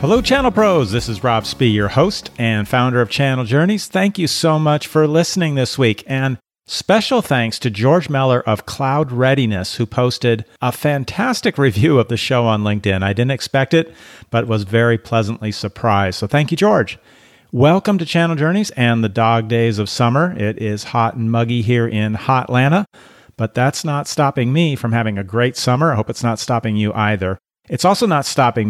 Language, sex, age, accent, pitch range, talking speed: English, male, 40-59, American, 110-140 Hz, 195 wpm